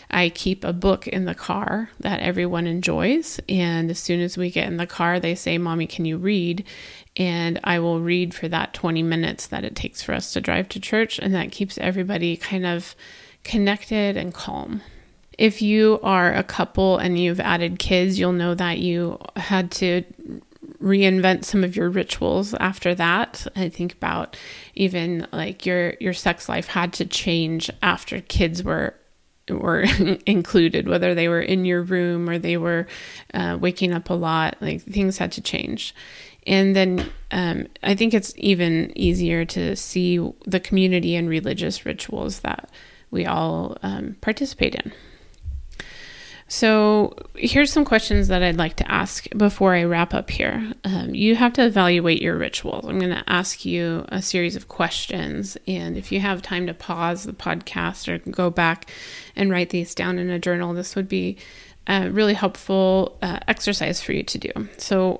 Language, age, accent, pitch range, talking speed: English, 30-49, American, 175-200 Hz, 175 wpm